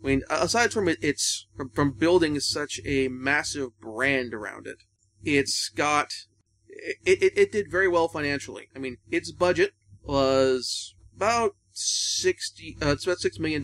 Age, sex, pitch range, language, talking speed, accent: 30-49, male, 120-160 Hz, English, 160 wpm, American